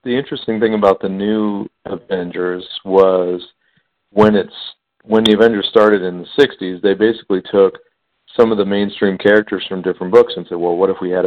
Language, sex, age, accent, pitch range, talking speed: English, male, 50-69, American, 95-110 Hz, 185 wpm